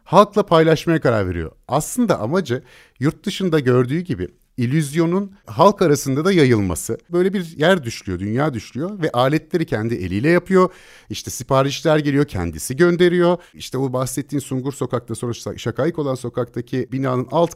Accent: native